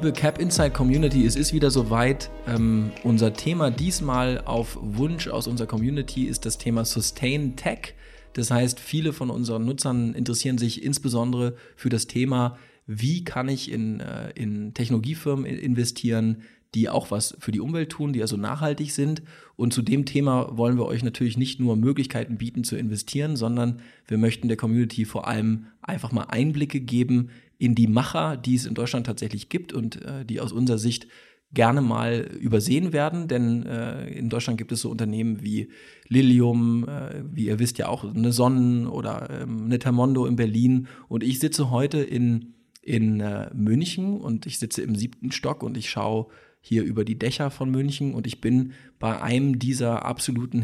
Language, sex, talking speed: German, male, 175 wpm